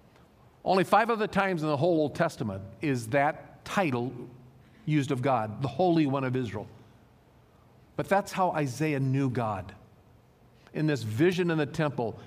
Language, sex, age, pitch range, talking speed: English, male, 50-69, 115-155 Hz, 155 wpm